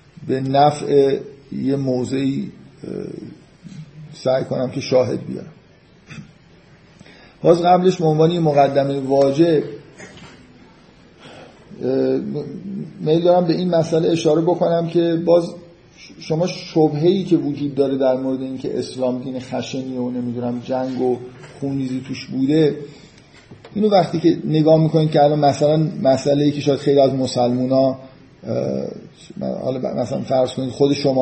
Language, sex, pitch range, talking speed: Persian, male, 130-160 Hz, 115 wpm